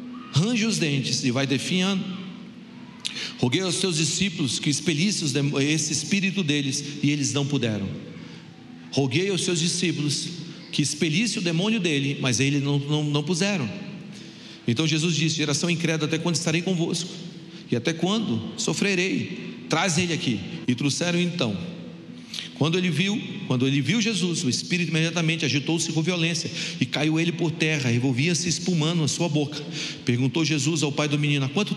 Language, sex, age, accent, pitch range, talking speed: Portuguese, male, 40-59, Brazilian, 140-180 Hz, 155 wpm